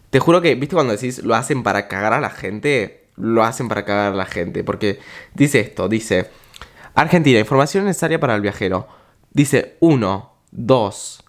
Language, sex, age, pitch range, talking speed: Spanish, male, 20-39, 110-160 Hz, 175 wpm